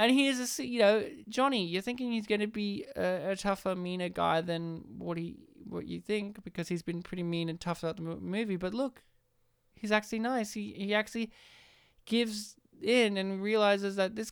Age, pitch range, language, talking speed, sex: 20-39, 165-225 Hz, English, 205 wpm, male